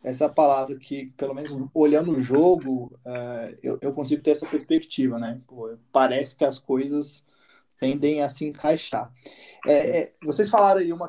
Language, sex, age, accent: Portuguese, male, 20-39, Brazilian